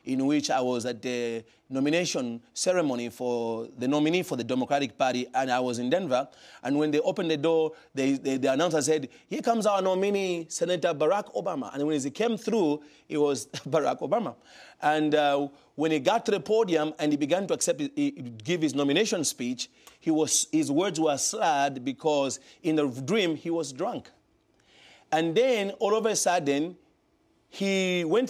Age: 30-49